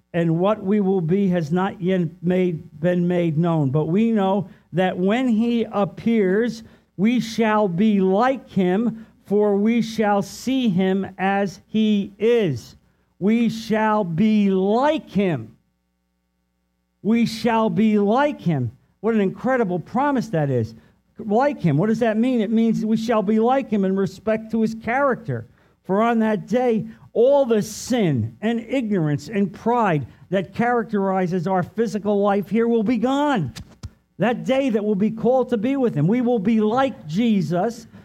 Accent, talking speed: American, 160 wpm